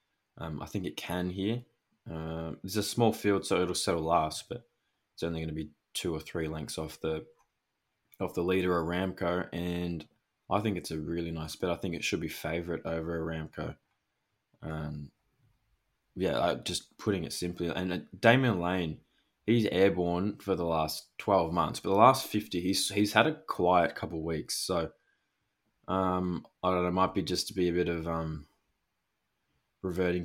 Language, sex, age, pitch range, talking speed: English, male, 20-39, 80-95 Hz, 185 wpm